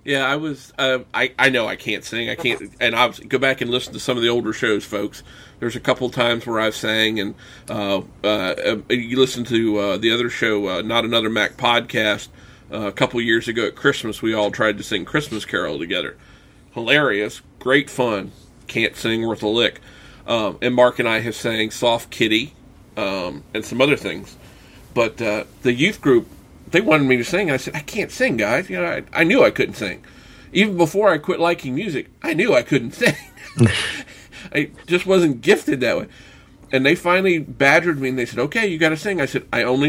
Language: English